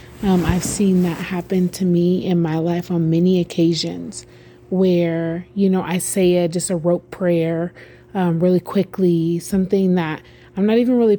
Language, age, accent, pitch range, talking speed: English, 30-49, American, 165-195 Hz, 170 wpm